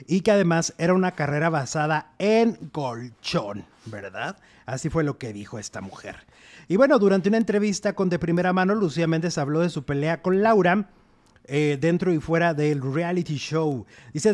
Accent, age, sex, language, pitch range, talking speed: Mexican, 30-49, male, French, 150-200 Hz, 175 wpm